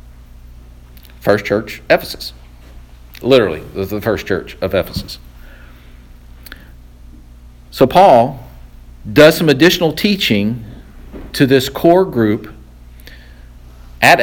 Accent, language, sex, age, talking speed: American, English, male, 50-69, 85 wpm